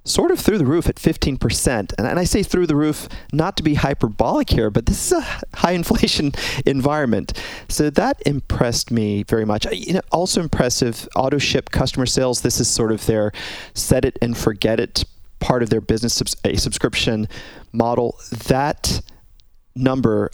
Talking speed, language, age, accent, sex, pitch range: 160 wpm, English, 40-59, American, male, 110-140 Hz